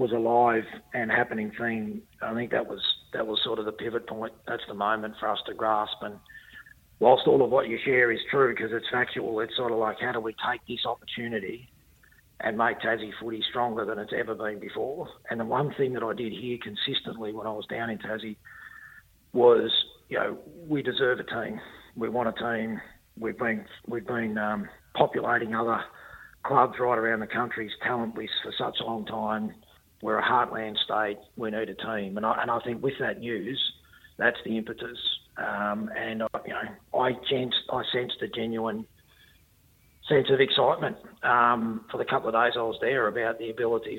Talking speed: 200 wpm